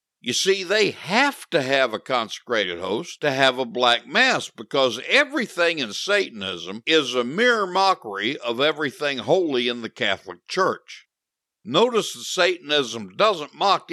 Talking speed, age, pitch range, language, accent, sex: 145 wpm, 60-79, 120-190 Hz, English, American, male